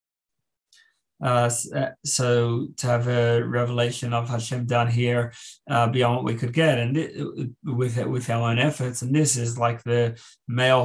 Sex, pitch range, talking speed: male, 120-145 Hz, 160 wpm